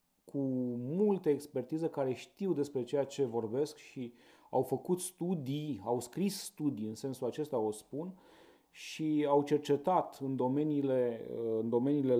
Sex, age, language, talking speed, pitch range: male, 30-49, Romanian, 135 wpm, 125-155 Hz